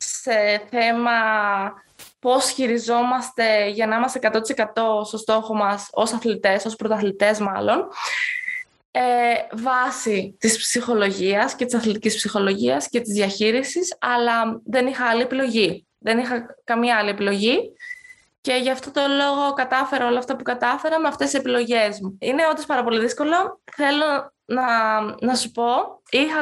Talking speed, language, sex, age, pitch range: 140 wpm, Greek, female, 20-39, 220-275 Hz